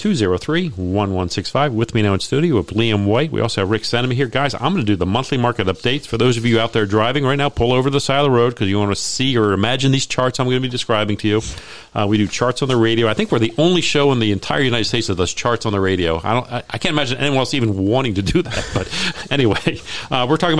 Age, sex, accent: 40-59, male, American